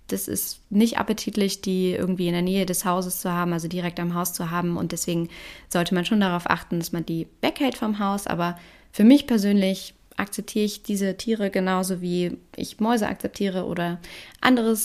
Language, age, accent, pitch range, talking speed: German, 20-39, German, 180-225 Hz, 190 wpm